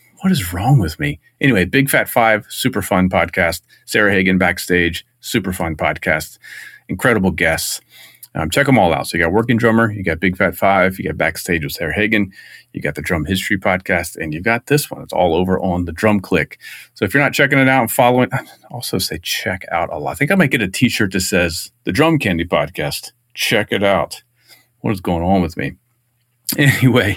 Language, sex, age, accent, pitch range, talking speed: English, male, 40-59, American, 85-115 Hz, 220 wpm